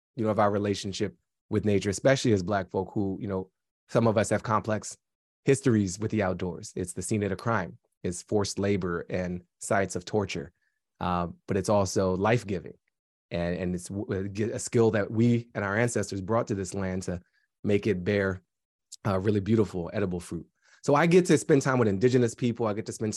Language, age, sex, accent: English, 20-39, male, American